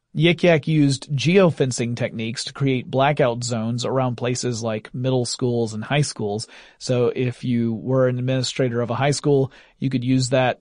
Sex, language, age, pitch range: male, English, 30-49, 120-150 Hz